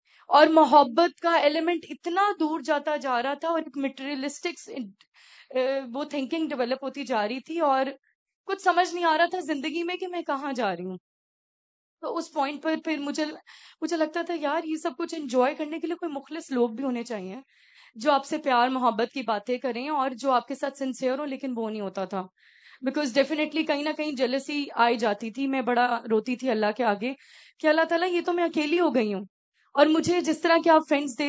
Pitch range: 255-315 Hz